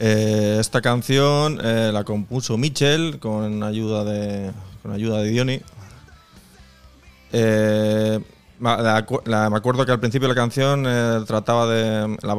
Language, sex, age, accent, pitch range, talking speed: Spanish, male, 20-39, Spanish, 105-115 Hz, 130 wpm